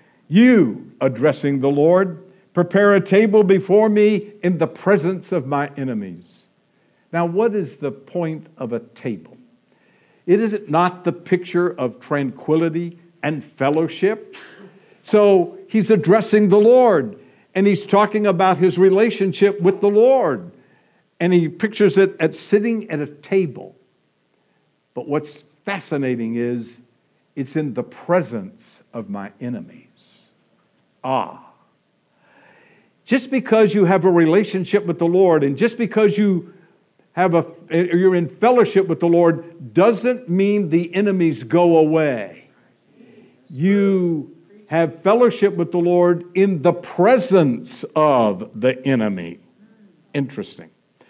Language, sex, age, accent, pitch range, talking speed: English, male, 60-79, American, 160-200 Hz, 125 wpm